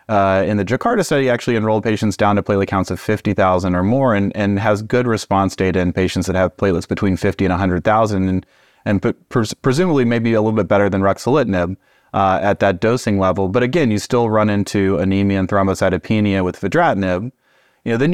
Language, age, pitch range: English, 30-49, 95-115 Hz